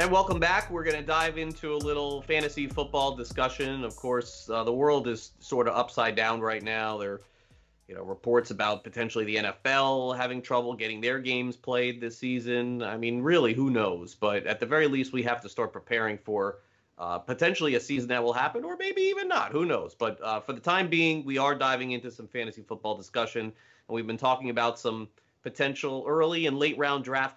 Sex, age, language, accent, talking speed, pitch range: male, 30-49, English, American, 215 wpm, 110-150 Hz